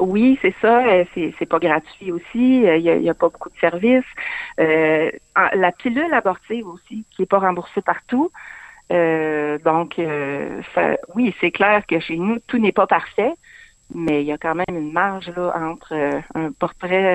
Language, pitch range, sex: French, 165-205 Hz, female